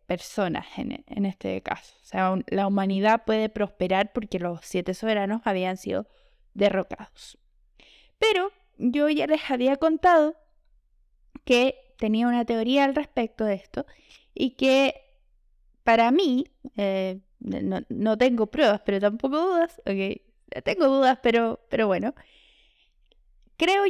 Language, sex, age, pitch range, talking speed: Spanish, female, 20-39, 215-285 Hz, 125 wpm